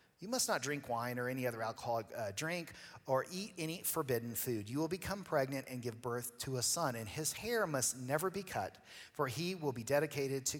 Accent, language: American, English